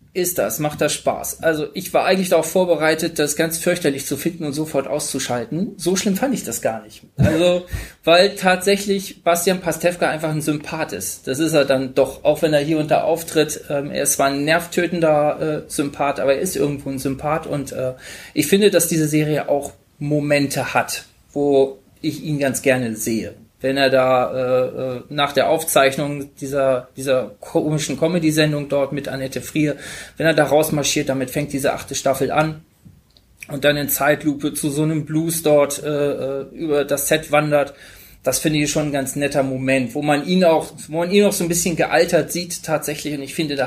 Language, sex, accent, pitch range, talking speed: German, male, German, 135-165 Hz, 185 wpm